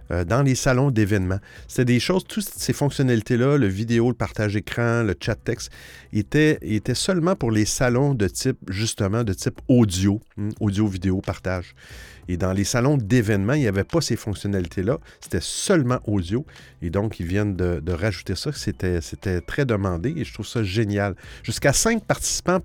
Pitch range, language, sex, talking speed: 105-155 Hz, French, male, 170 wpm